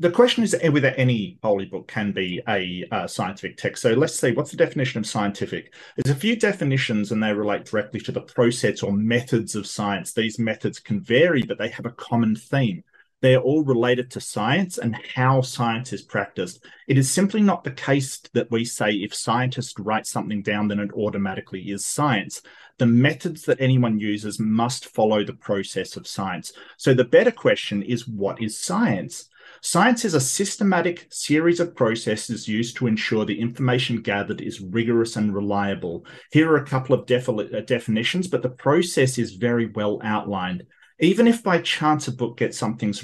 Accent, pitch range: Australian, 110-150 Hz